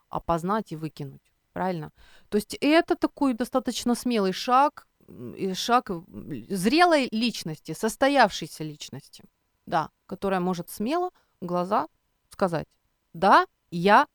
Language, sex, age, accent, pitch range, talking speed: Ukrainian, female, 30-49, native, 160-230 Hz, 110 wpm